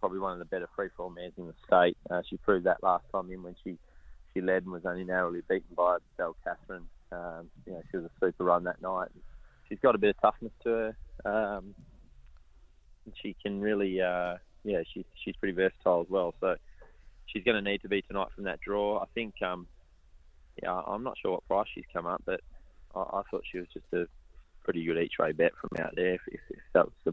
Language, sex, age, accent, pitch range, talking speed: English, male, 20-39, Australian, 85-95 Hz, 230 wpm